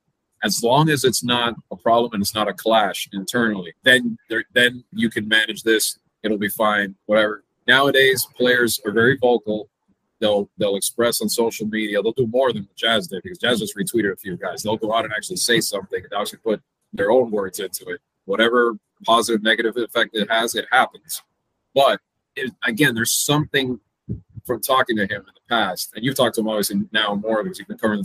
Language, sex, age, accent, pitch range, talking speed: English, male, 30-49, American, 105-125 Hz, 205 wpm